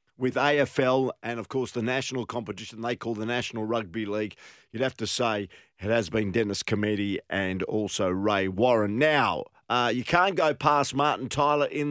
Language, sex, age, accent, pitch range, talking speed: English, male, 50-69, Australian, 115-145 Hz, 180 wpm